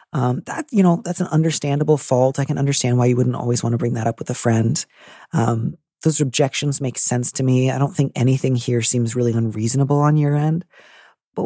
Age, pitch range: 30-49, 130-180 Hz